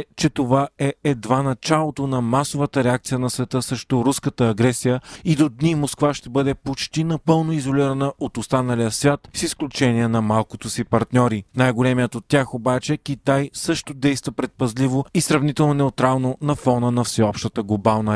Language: Bulgarian